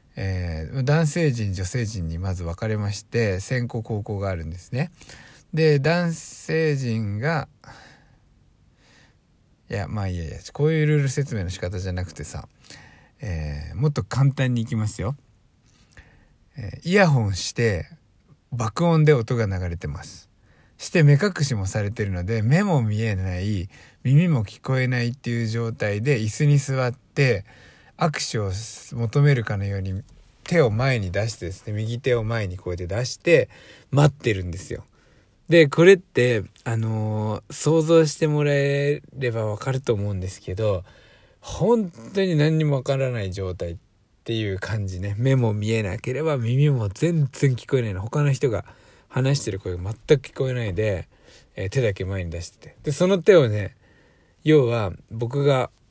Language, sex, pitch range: Japanese, male, 100-140 Hz